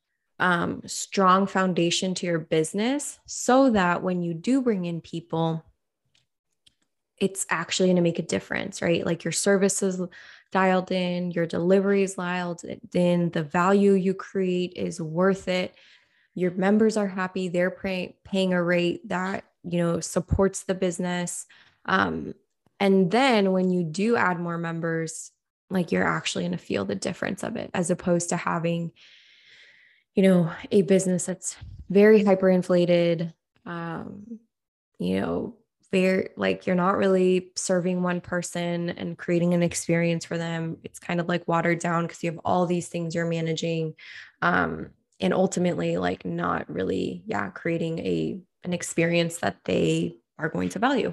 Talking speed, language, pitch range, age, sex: 155 wpm, English, 170-190 Hz, 20-39, female